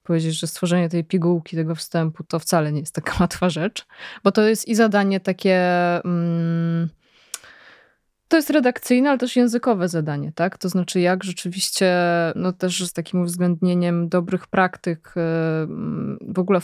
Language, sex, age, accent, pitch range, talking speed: Polish, female, 20-39, native, 170-195 Hz, 150 wpm